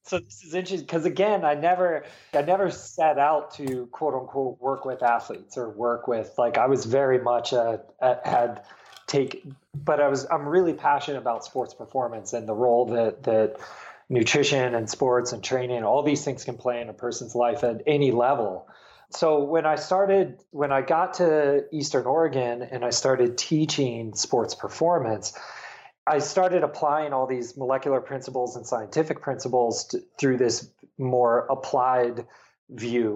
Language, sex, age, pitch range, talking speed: English, male, 20-39, 120-150 Hz, 165 wpm